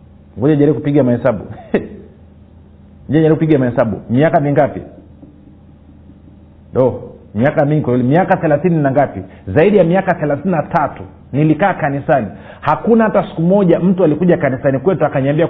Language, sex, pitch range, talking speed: Swahili, male, 130-185 Hz, 125 wpm